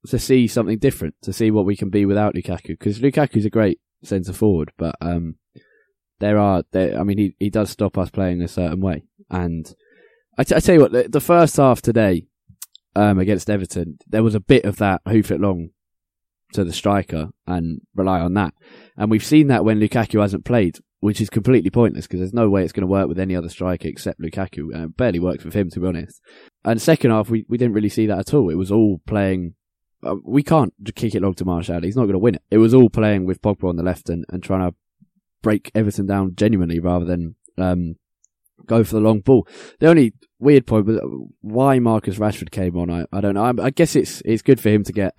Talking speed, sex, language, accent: 235 wpm, male, English, British